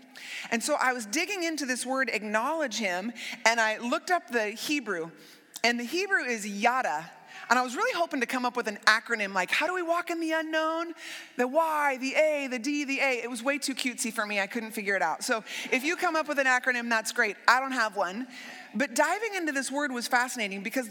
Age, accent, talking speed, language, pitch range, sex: 30-49, American, 235 wpm, English, 215-290 Hz, female